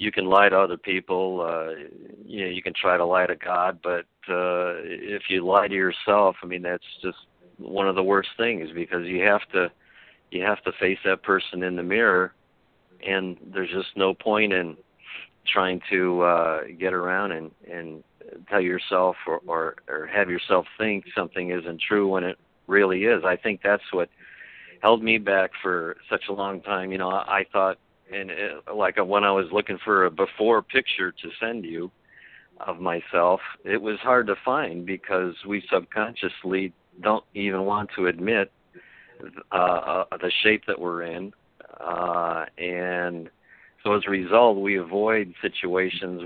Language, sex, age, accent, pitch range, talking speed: English, male, 50-69, American, 90-100 Hz, 175 wpm